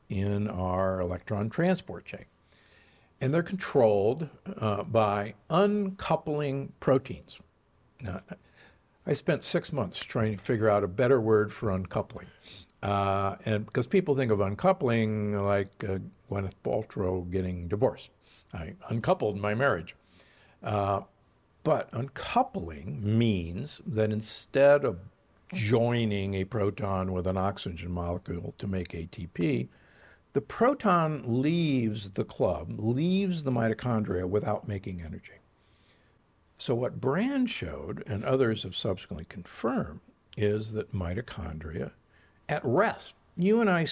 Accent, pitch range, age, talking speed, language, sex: American, 95-130 Hz, 60-79, 120 wpm, English, male